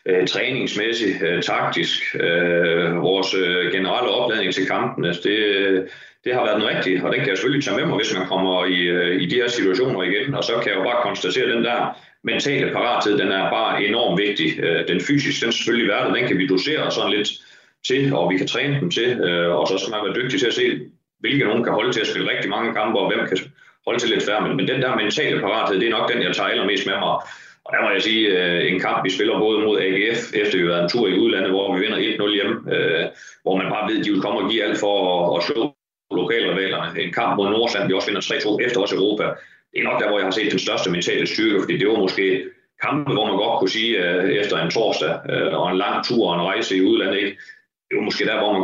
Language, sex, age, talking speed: Danish, male, 30-49, 245 wpm